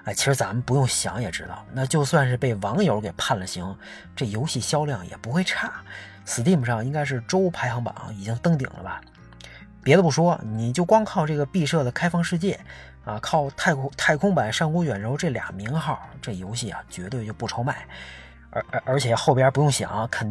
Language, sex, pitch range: Chinese, male, 110-155 Hz